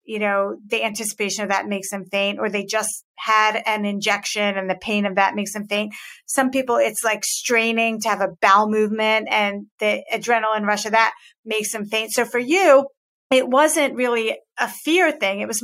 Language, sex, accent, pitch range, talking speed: English, female, American, 205-245 Hz, 205 wpm